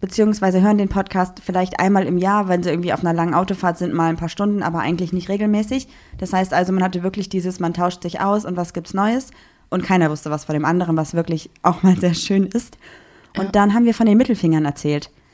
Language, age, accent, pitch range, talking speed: German, 20-39, German, 165-200 Hz, 240 wpm